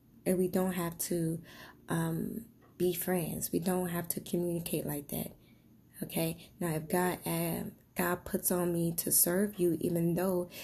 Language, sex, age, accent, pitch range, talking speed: English, female, 20-39, American, 160-180 Hz, 165 wpm